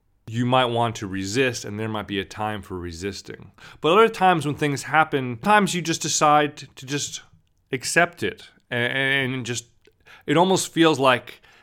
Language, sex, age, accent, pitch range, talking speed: English, male, 30-49, American, 105-140 Hz, 170 wpm